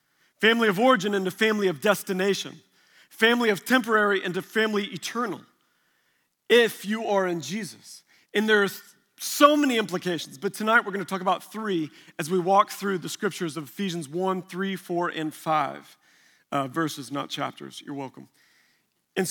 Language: English